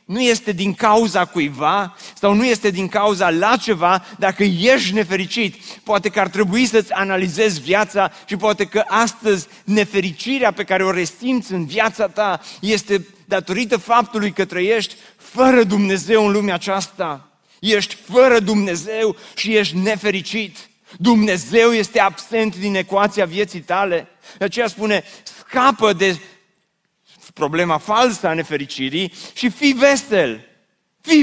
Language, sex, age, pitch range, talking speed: Romanian, male, 30-49, 180-220 Hz, 135 wpm